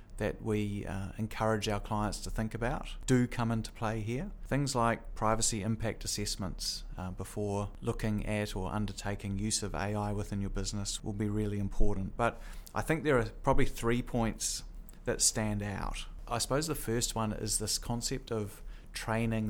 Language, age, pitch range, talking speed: English, 30-49, 100-115 Hz, 170 wpm